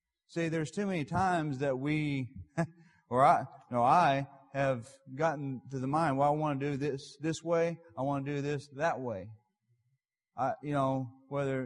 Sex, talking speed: male, 175 wpm